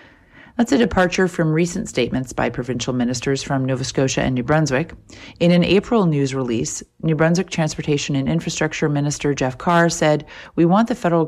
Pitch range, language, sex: 135-170 Hz, English, female